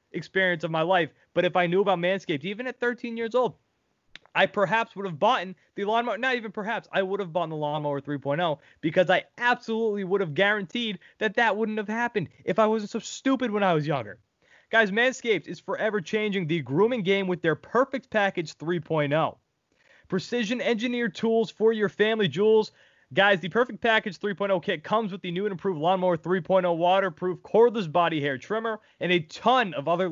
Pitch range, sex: 155-215 Hz, male